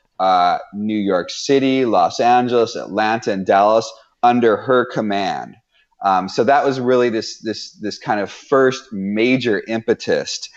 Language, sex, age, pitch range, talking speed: English, male, 30-49, 105-130 Hz, 140 wpm